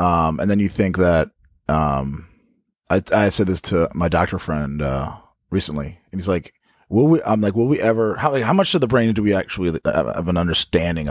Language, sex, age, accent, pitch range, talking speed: English, male, 30-49, American, 85-115 Hz, 210 wpm